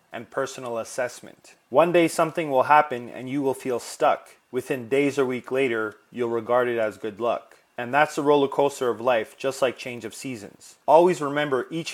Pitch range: 120-145 Hz